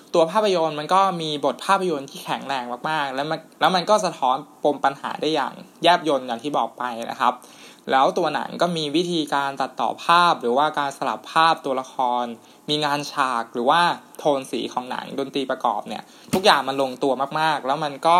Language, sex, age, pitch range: Thai, male, 20-39, 130-170 Hz